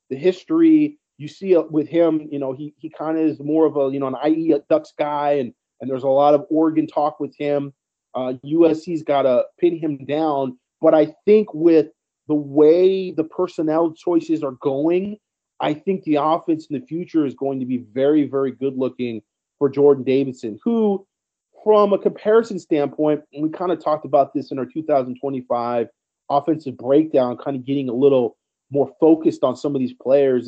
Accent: American